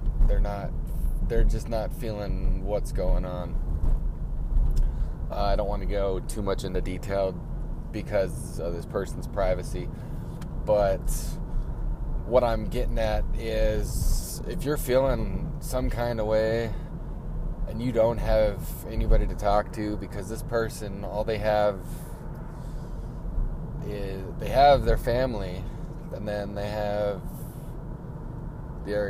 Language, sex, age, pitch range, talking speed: English, male, 20-39, 100-115 Hz, 125 wpm